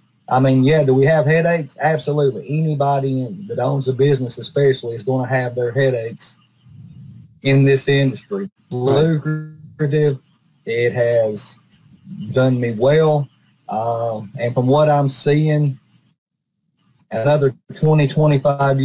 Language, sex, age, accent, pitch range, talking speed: English, male, 30-49, American, 130-155 Hz, 120 wpm